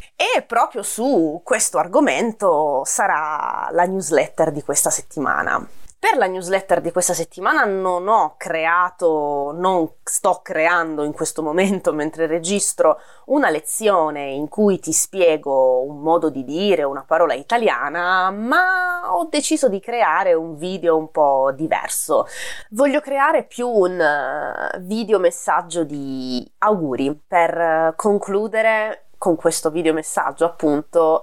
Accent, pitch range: native, 160-230 Hz